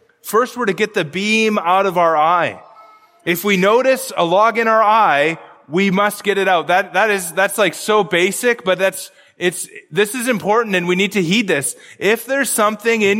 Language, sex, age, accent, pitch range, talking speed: English, male, 20-39, American, 190-235 Hz, 210 wpm